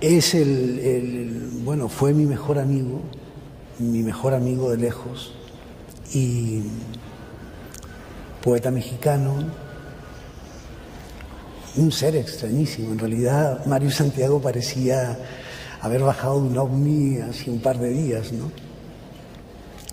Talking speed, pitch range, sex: 105 wpm, 130-175 Hz, male